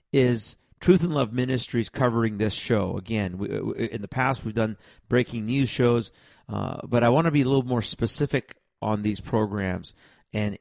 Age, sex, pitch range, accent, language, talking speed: 40-59, male, 105-125 Hz, American, English, 185 wpm